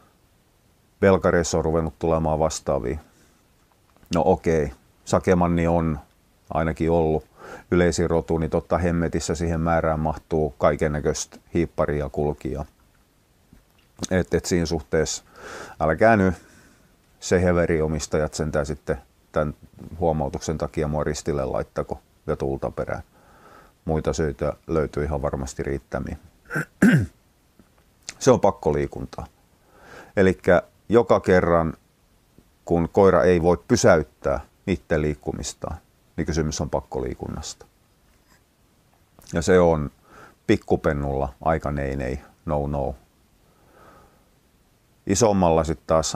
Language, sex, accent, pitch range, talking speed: Finnish, male, native, 75-85 Hz, 100 wpm